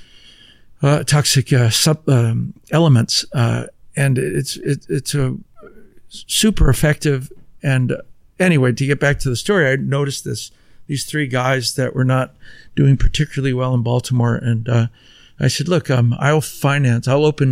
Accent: American